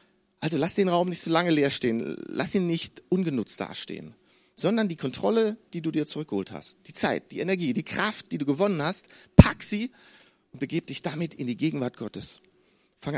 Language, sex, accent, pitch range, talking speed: German, male, German, 150-200 Hz, 195 wpm